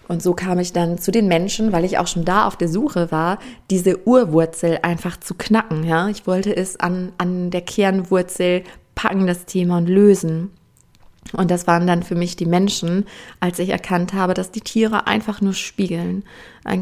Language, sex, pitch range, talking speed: German, female, 175-195 Hz, 195 wpm